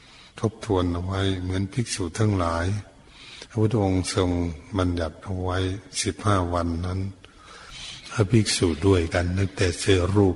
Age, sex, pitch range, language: 60-79, male, 85-100 Hz, Thai